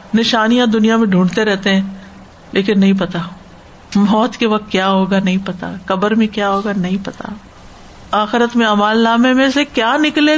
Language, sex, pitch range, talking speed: Urdu, female, 185-235 Hz, 175 wpm